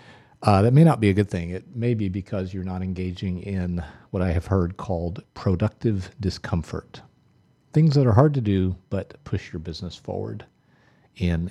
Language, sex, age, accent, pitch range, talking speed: English, male, 40-59, American, 95-120 Hz, 180 wpm